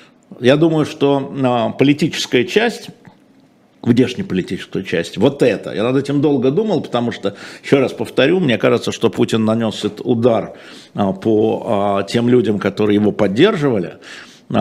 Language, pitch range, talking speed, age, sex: Russian, 105-140 Hz, 130 wpm, 50-69, male